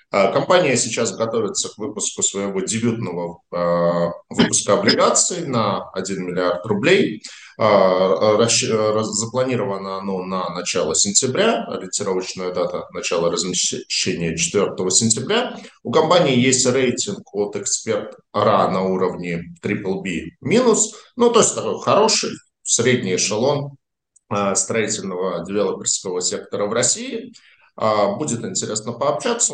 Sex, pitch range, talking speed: male, 95-150 Hz, 110 wpm